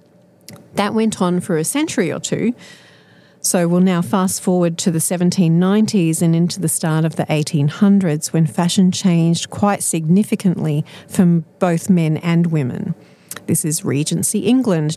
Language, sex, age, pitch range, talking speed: English, female, 40-59, 160-190 Hz, 150 wpm